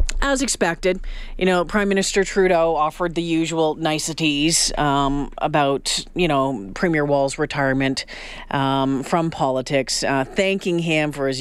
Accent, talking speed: American, 135 wpm